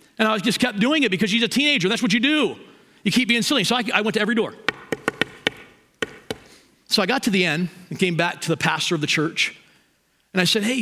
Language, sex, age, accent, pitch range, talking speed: English, male, 40-59, American, 185-250 Hz, 245 wpm